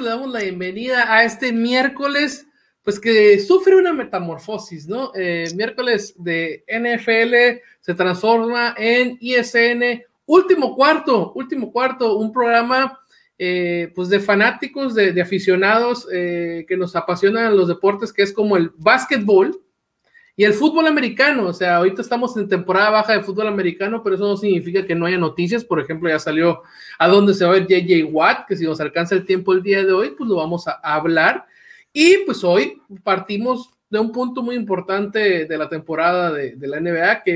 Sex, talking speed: male, 180 wpm